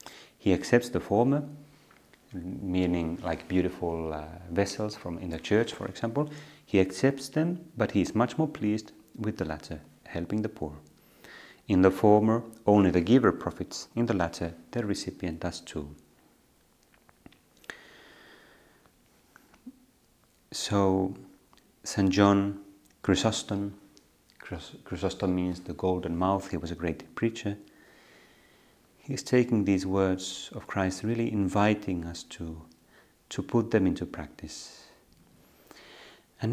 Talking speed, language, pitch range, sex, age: 120 wpm, Finnish, 85-110 Hz, male, 30-49